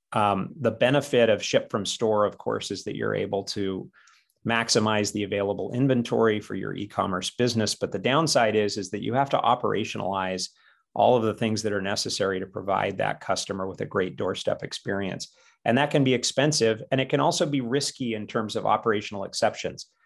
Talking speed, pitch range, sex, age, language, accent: 190 wpm, 100-125 Hz, male, 30-49, English, American